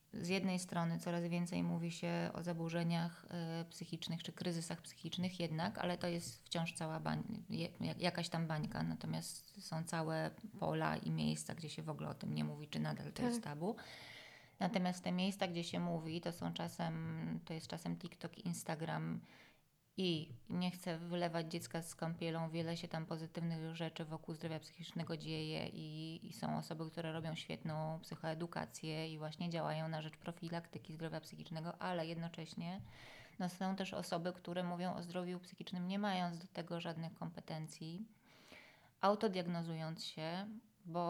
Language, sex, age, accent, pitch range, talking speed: Polish, female, 20-39, native, 160-175 Hz, 160 wpm